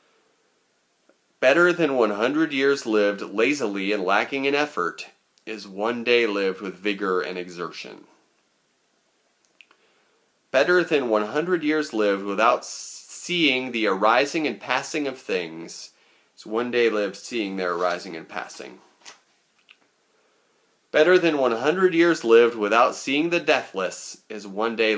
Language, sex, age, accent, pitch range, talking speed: English, male, 30-49, American, 100-140 Hz, 125 wpm